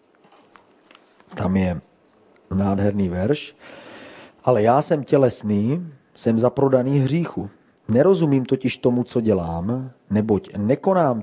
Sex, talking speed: male, 95 wpm